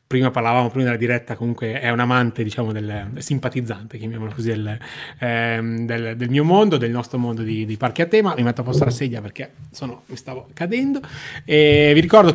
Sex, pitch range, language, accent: male, 120-145 Hz, Italian, native